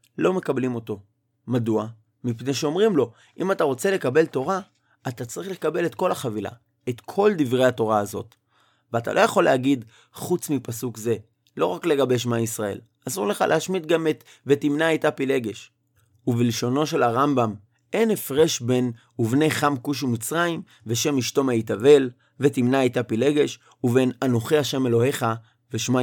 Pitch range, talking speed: 115-140 Hz, 150 wpm